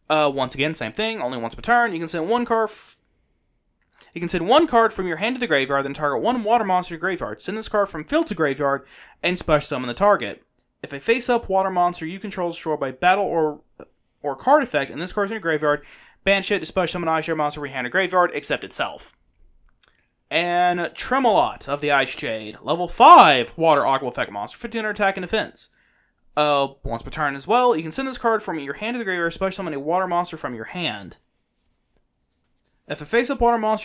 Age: 20-39